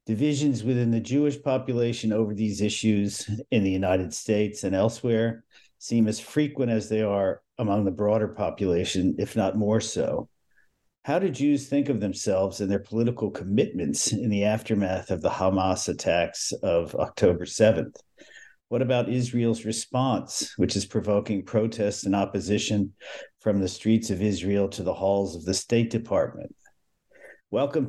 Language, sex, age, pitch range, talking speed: English, male, 50-69, 95-115 Hz, 155 wpm